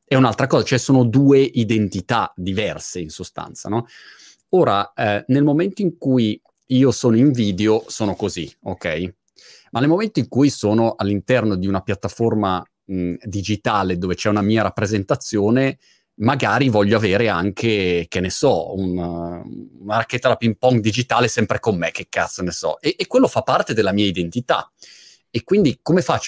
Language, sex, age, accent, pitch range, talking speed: Italian, male, 30-49, native, 95-130 Hz, 165 wpm